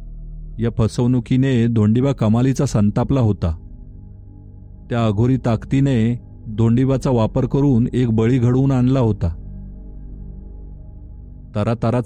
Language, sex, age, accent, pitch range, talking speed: Marathi, male, 40-59, native, 105-130 Hz, 90 wpm